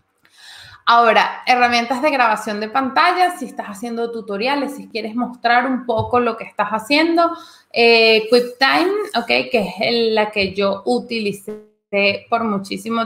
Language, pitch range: Spanish, 200-250 Hz